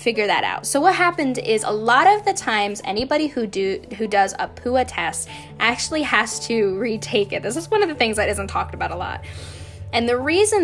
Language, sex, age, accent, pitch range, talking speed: English, female, 10-29, American, 195-245 Hz, 225 wpm